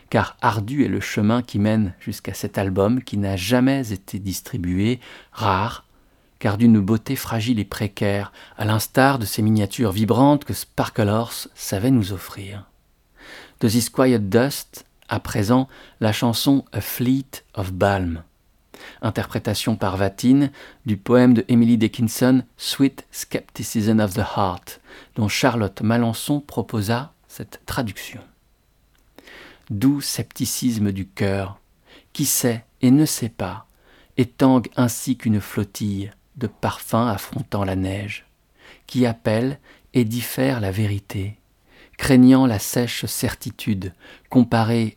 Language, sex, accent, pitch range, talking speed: French, male, French, 100-125 Hz, 125 wpm